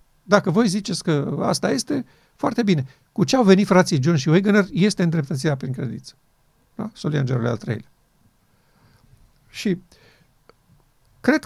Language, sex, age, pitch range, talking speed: Romanian, male, 50-69, 130-170 Hz, 135 wpm